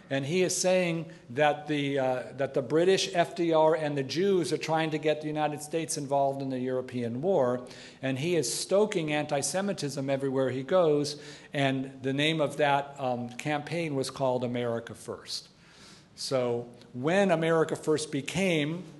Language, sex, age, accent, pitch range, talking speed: English, male, 50-69, American, 130-160 Hz, 160 wpm